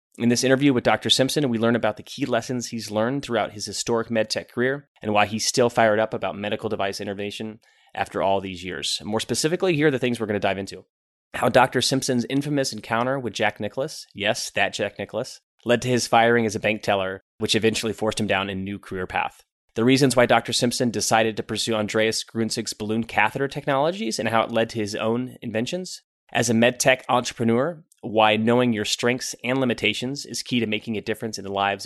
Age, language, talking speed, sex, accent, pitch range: 30-49, English, 215 wpm, male, American, 105-125 Hz